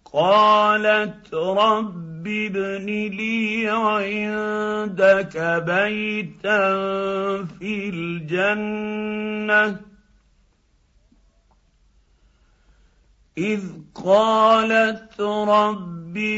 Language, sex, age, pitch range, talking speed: Arabic, male, 50-69, 155-210 Hz, 40 wpm